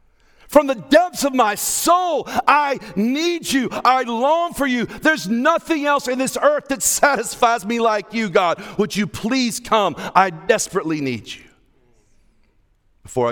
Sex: male